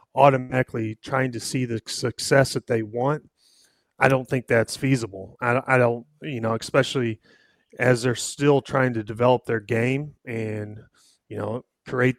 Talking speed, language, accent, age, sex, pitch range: 160 wpm, English, American, 30-49, male, 120-135 Hz